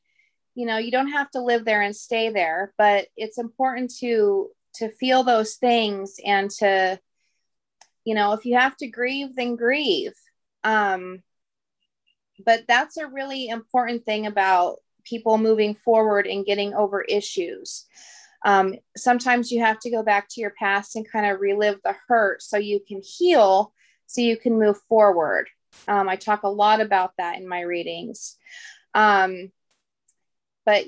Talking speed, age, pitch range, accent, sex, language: 160 wpm, 30-49, 205-245 Hz, American, female, English